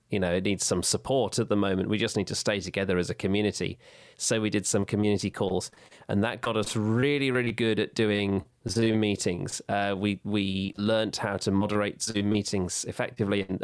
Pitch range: 100-120 Hz